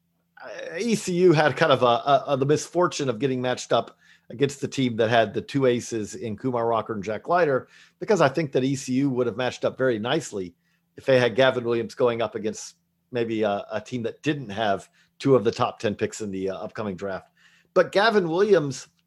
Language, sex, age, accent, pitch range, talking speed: English, male, 40-59, American, 115-160 Hz, 210 wpm